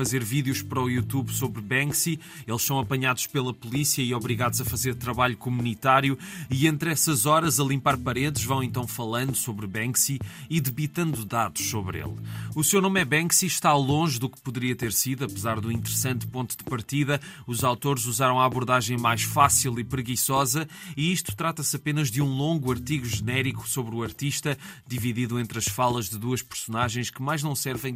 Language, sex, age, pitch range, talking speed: Portuguese, male, 20-39, 120-145 Hz, 180 wpm